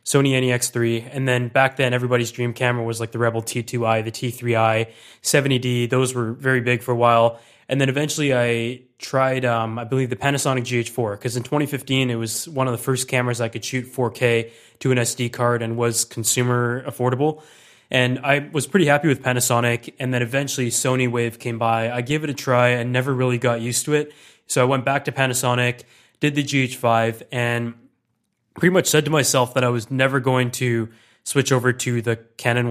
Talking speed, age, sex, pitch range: 200 wpm, 20-39, male, 120-135 Hz